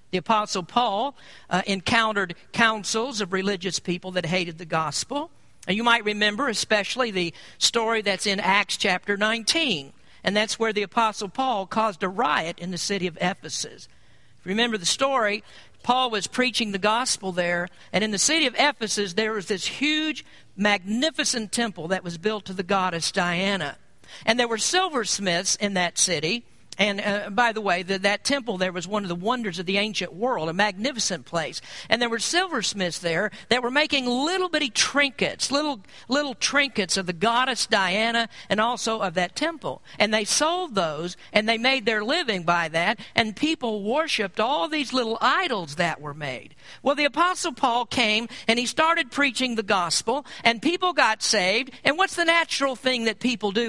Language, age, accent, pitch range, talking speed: English, 50-69, American, 190-255 Hz, 180 wpm